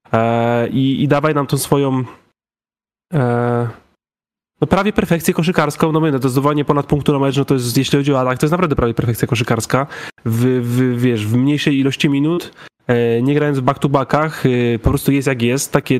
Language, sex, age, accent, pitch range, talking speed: Polish, male, 20-39, native, 125-155 Hz, 185 wpm